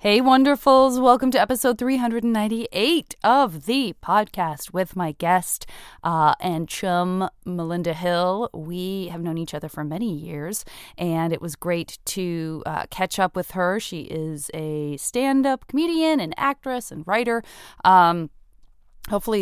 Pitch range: 160-225 Hz